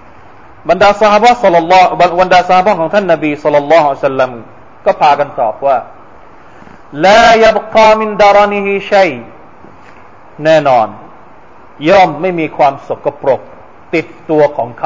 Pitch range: 150-205 Hz